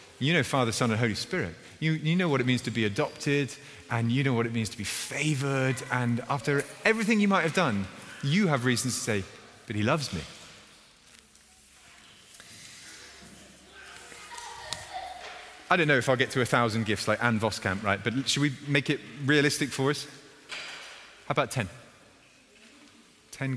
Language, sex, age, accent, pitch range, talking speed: English, male, 30-49, British, 110-155 Hz, 170 wpm